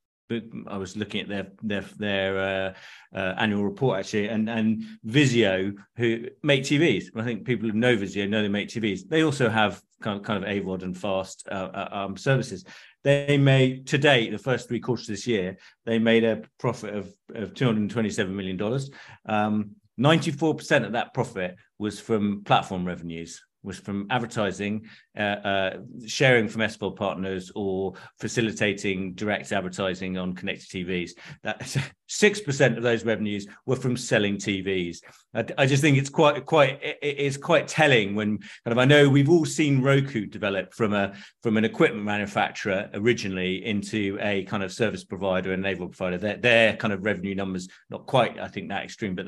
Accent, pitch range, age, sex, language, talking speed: British, 95-120 Hz, 40-59, male, English, 175 wpm